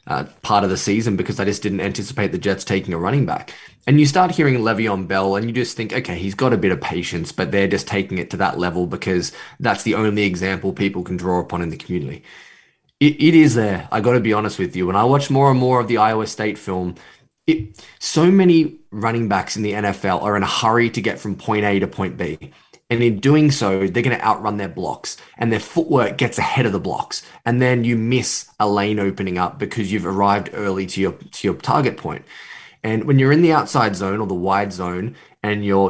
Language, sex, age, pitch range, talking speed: English, male, 10-29, 95-120 Hz, 240 wpm